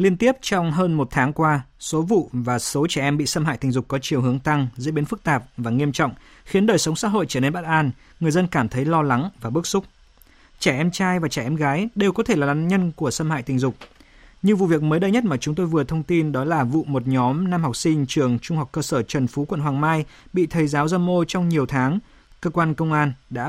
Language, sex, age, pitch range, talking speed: Vietnamese, male, 20-39, 135-175 Hz, 275 wpm